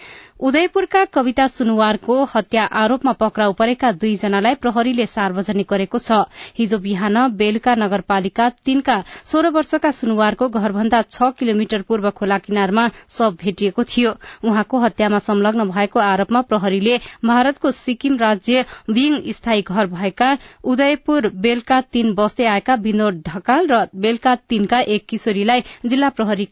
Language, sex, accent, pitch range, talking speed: English, female, Indian, 210-255 Hz, 130 wpm